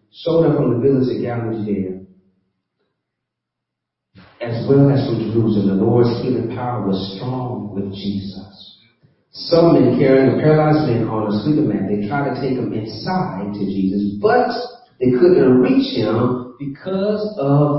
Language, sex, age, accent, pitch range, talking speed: English, male, 40-59, American, 125-190 Hz, 155 wpm